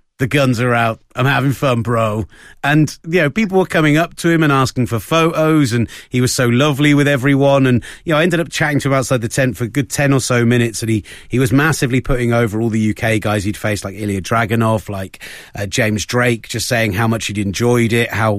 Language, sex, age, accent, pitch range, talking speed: English, male, 30-49, British, 105-135 Hz, 245 wpm